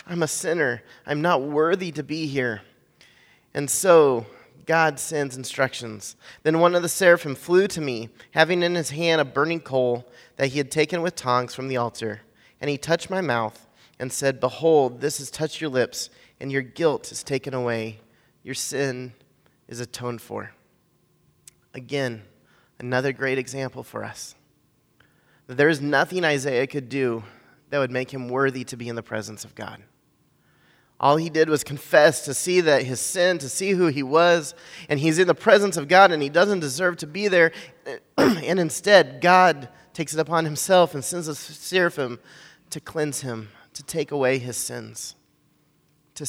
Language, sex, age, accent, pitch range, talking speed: English, male, 30-49, American, 125-160 Hz, 175 wpm